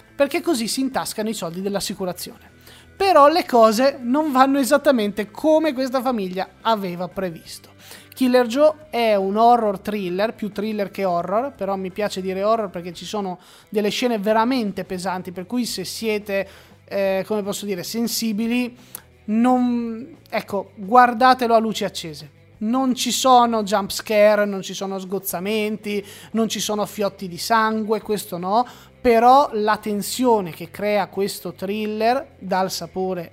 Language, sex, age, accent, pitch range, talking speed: Italian, male, 20-39, native, 190-250 Hz, 145 wpm